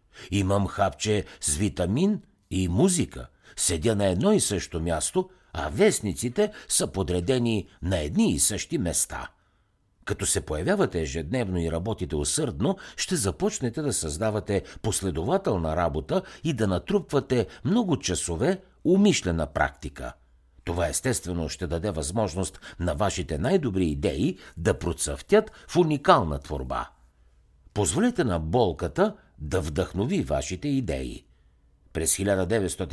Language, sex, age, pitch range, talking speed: Bulgarian, male, 60-79, 80-115 Hz, 115 wpm